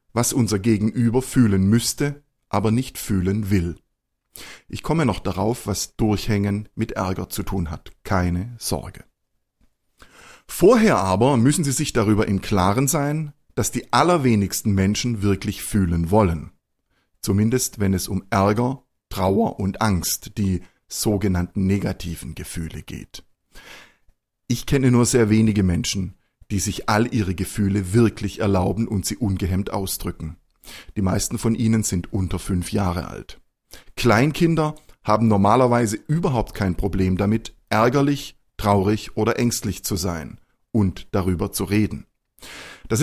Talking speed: 130 wpm